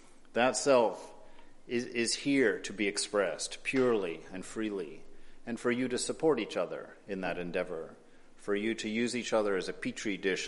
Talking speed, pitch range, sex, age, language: 180 wpm, 95-125 Hz, male, 40-59, English